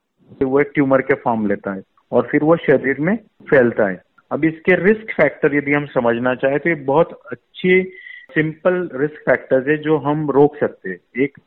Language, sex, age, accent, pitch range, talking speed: Hindi, male, 50-69, native, 130-155 Hz, 190 wpm